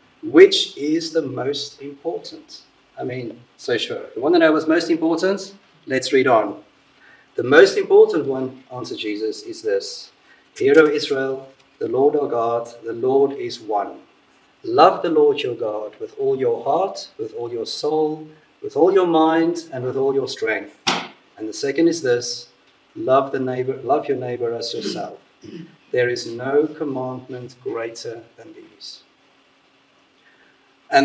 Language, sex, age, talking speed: English, male, 40-59, 155 wpm